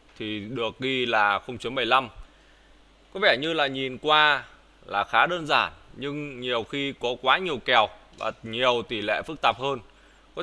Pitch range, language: 115-145 Hz, Vietnamese